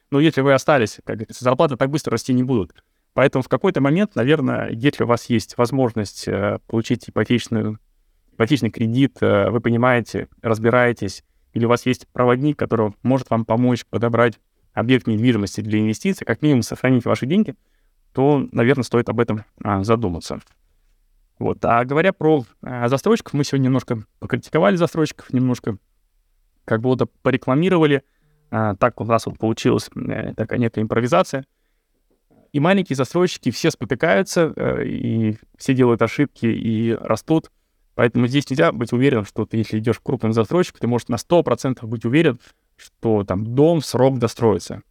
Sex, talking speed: male, 145 wpm